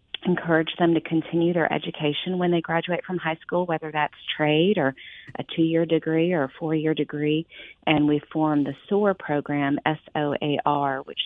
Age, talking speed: 40-59, 165 wpm